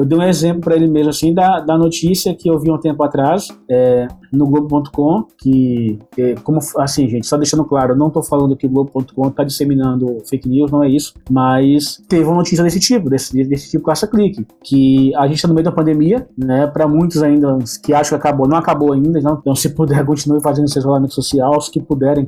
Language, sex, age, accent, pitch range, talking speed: Portuguese, male, 20-39, Brazilian, 140-180 Hz, 220 wpm